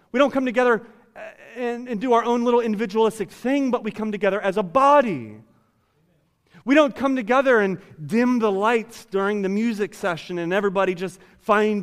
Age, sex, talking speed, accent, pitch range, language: 30-49, male, 180 wpm, American, 175-225 Hz, English